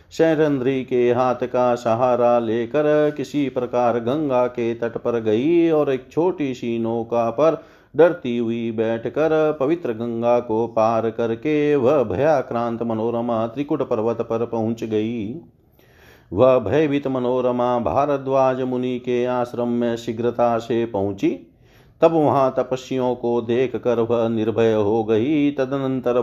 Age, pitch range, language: 50-69, 115-140 Hz, Hindi